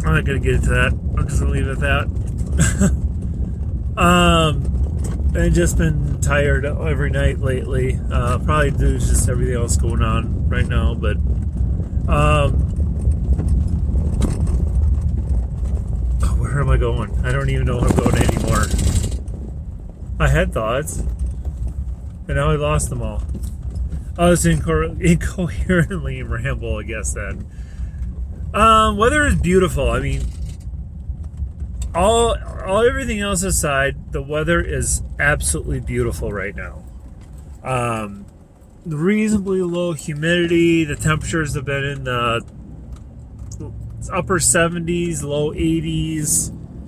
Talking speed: 125 wpm